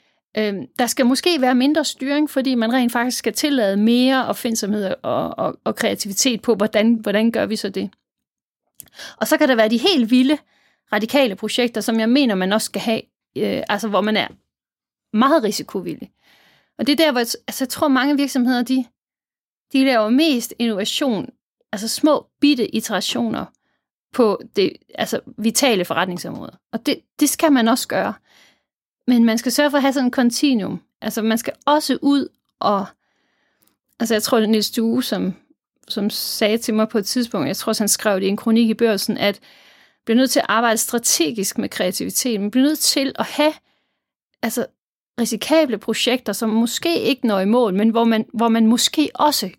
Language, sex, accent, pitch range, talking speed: Danish, female, native, 220-270 Hz, 190 wpm